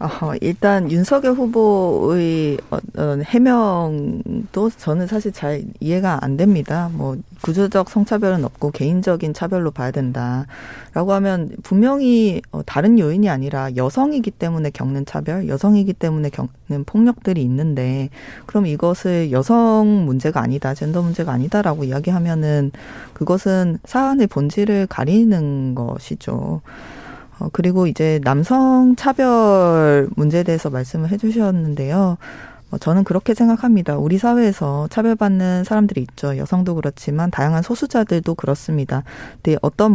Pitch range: 145-205 Hz